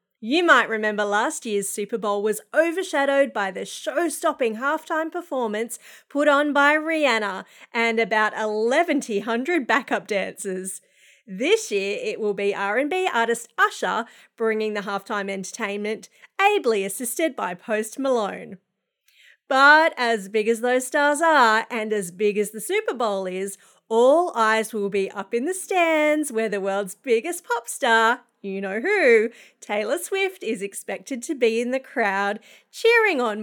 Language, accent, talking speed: English, Australian, 150 wpm